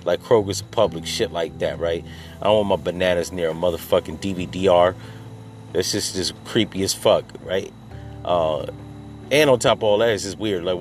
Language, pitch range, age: English, 85-105 Hz, 30-49